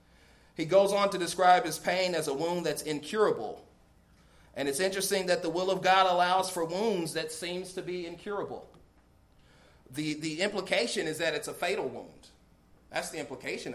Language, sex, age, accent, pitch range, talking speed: English, male, 40-59, American, 130-175 Hz, 175 wpm